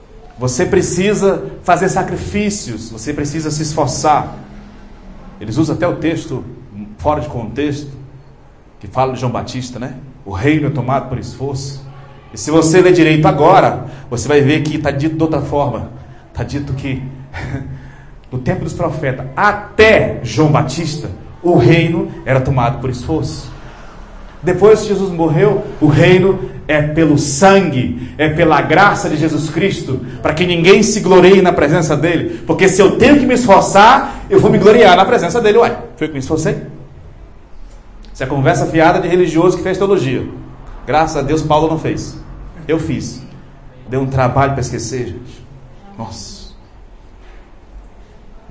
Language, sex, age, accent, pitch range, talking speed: Portuguese, male, 40-59, Brazilian, 125-170 Hz, 155 wpm